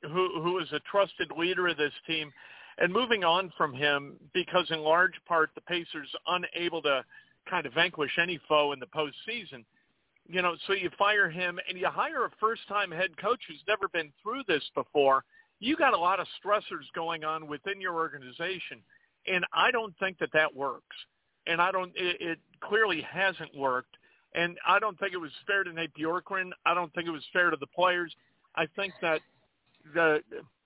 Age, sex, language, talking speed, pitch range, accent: 50-69, male, English, 195 wpm, 155-185 Hz, American